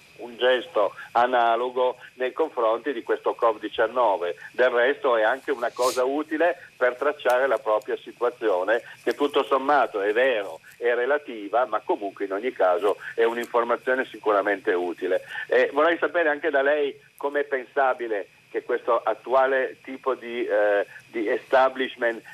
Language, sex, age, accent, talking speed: Italian, male, 50-69, native, 135 wpm